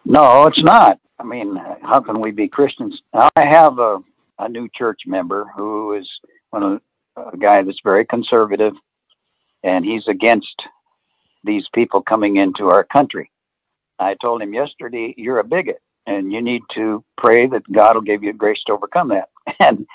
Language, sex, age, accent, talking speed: English, male, 60-79, American, 165 wpm